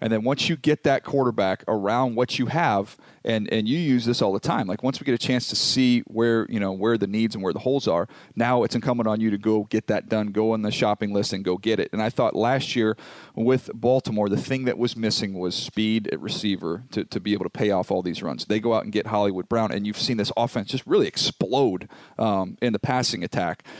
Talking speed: 260 wpm